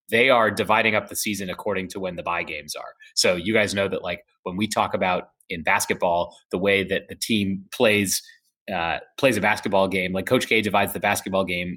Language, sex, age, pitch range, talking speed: English, male, 30-49, 95-115 Hz, 220 wpm